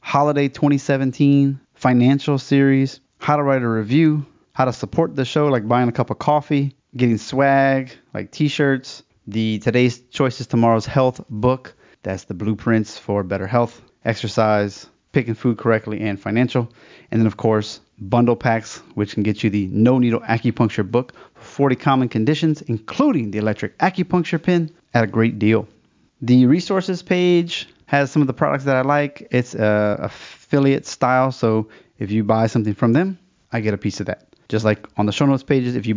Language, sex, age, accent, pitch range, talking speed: English, male, 30-49, American, 110-145 Hz, 175 wpm